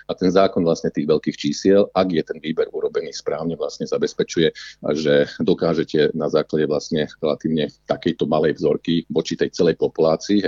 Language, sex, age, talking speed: Slovak, male, 50-69, 160 wpm